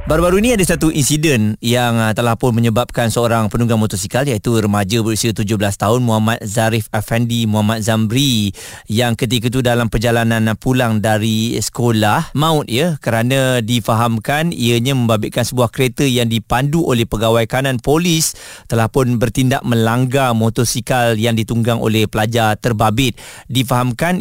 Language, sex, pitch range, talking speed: Malay, male, 115-135 Hz, 135 wpm